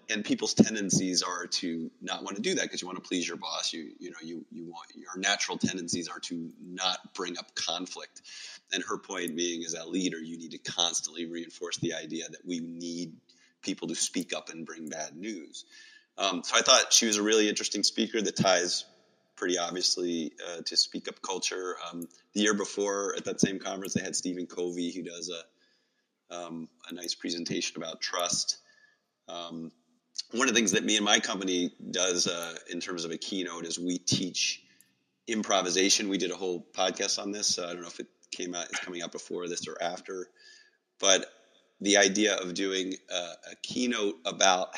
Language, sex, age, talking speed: English, male, 30-49, 200 wpm